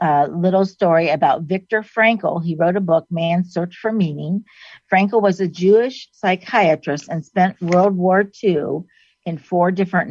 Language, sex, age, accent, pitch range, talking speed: English, female, 50-69, American, 160-200 Hz, 165 wpm